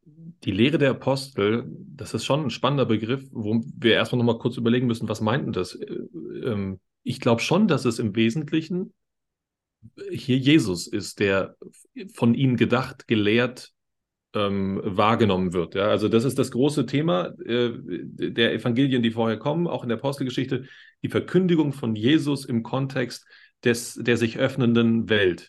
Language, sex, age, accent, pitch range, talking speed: German, male, 30-49, German, 115-135 Hz, 150 wpm